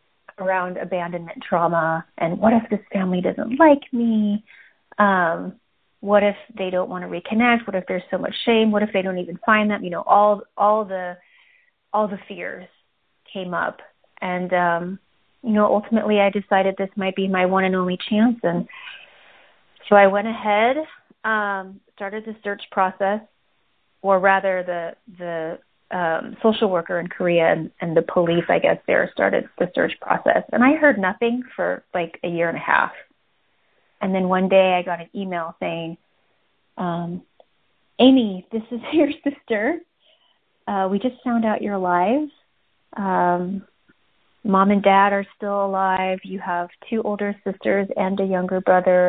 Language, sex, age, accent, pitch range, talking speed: English, female, 30-49, American, 180-220 Hz, 165 wpm